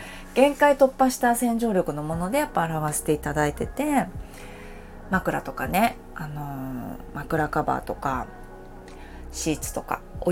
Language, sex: Japanese, female